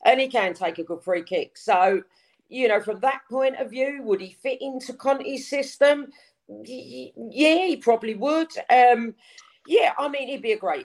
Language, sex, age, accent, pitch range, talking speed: English, female, 40-59, British, 190-270 Hz, 200 wpm